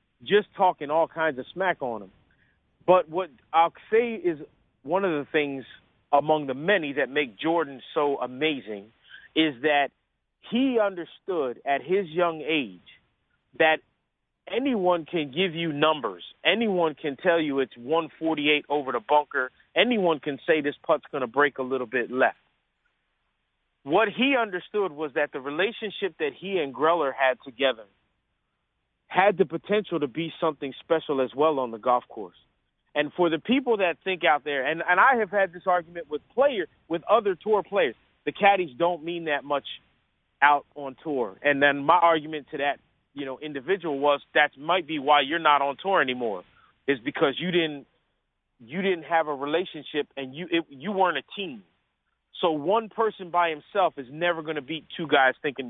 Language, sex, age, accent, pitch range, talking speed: English, male, 40-59, American, 145-180 Hz, 175 wpm